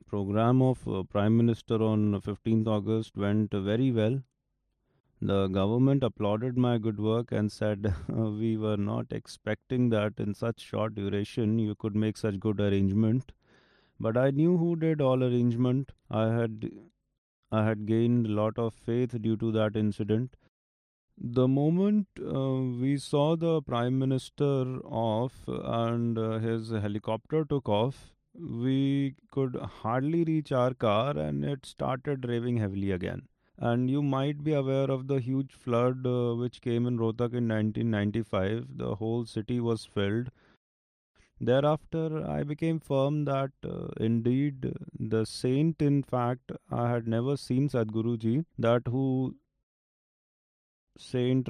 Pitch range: 110-130 Hz